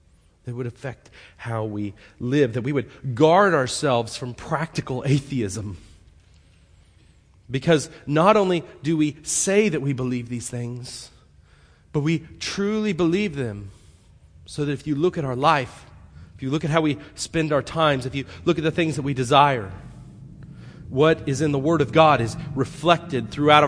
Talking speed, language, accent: 170 wpm, English, American